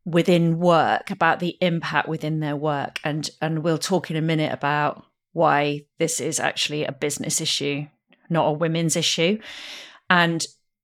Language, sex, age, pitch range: English, female, 40-59, 150-180 Hz